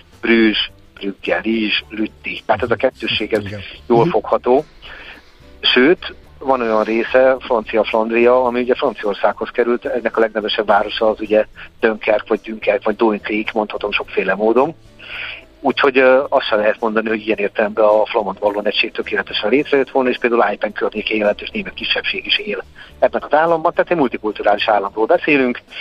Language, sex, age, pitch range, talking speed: Hungarian, male, 50-69, 105-125 Hz, 145 wpm